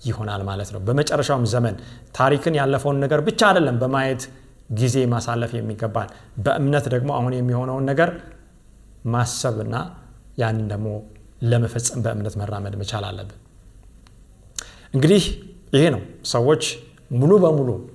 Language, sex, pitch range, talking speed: Amharic, male, 110-155 Hz, 105 wpm